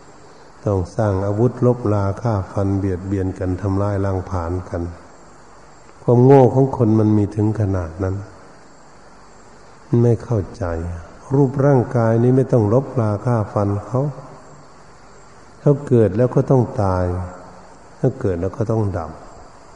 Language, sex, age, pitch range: Thai, male, 60-79, 95-120 Hz